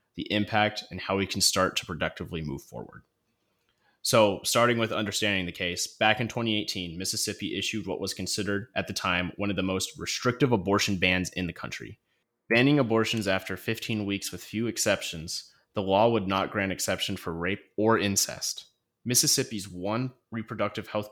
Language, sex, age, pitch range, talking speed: English, male, 30-49, 100-120 Hz, 170 wpm